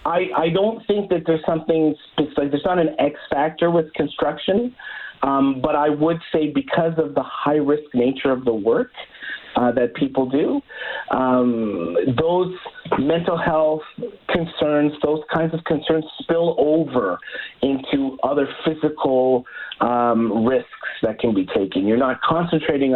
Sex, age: male, 40-59